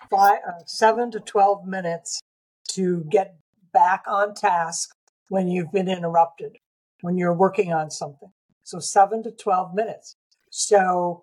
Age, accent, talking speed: 60-79, American, 135 wpm